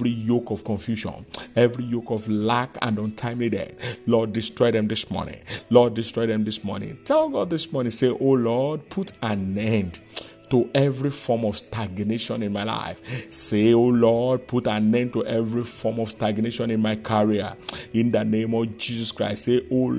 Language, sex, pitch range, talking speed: English, male, 110-125 Hz, 185 wpm